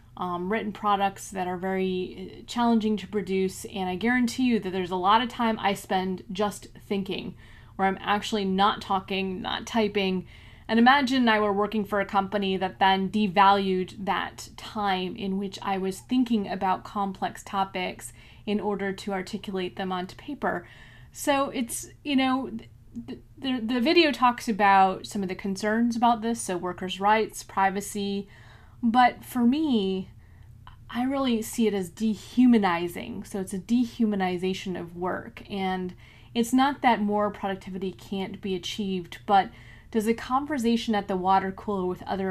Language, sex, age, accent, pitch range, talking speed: English, female, 20-39, American, 190-235 Hz, 160 wpm